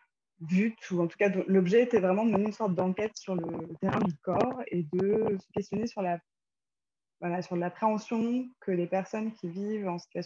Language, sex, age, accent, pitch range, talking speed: French, female, 20-39, French, 175-210 Hz, 195 wpm